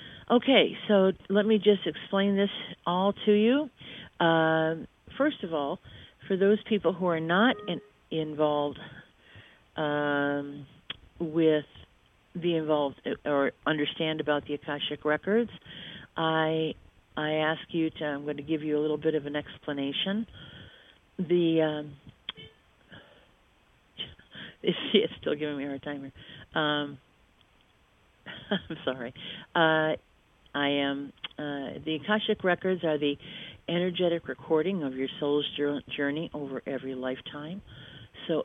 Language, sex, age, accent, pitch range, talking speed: English, female, 50-69, American, 145-175 Hz, 120 wpm